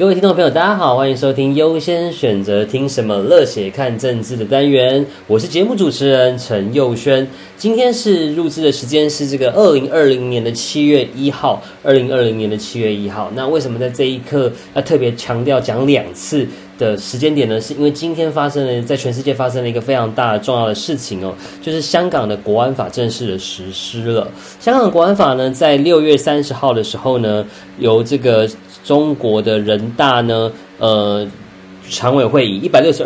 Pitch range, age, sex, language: 105-145 Hz, 20-39, male, Chinese